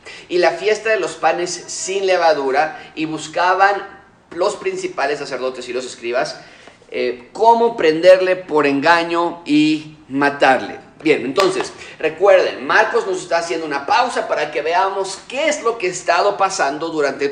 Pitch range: 140-205 Hz